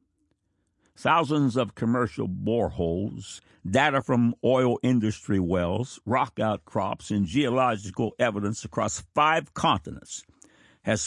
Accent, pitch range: American, 105-140 Hz